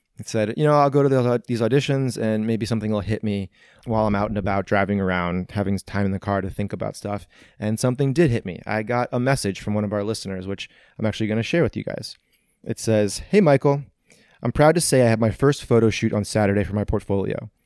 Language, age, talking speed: English, 30-49, 250 wpm